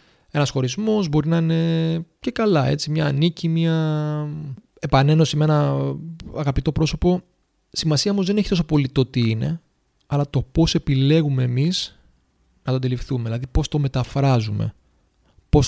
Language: Greek